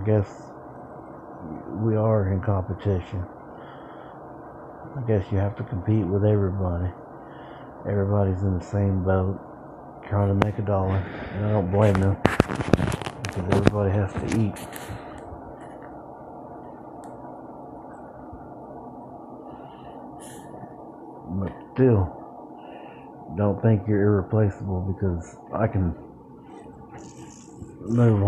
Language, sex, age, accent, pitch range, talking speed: English, male, 60-79, American, 95-115 Hz, 95 wpm